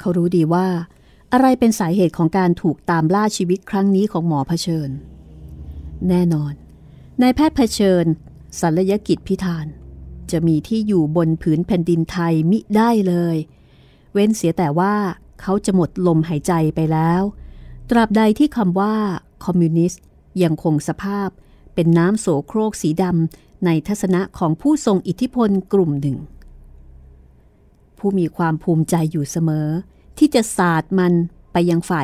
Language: Thai